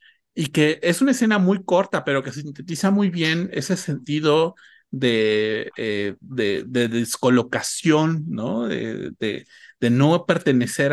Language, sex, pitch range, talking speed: Spanish, male, 125-170 Hz, 135 wpm